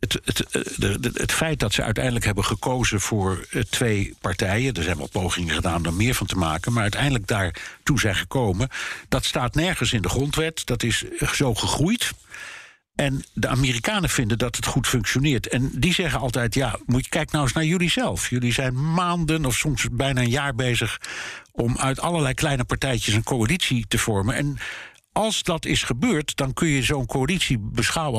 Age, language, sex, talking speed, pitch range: 60-79, Dutch, male, 190 wpm, 110-140 Hz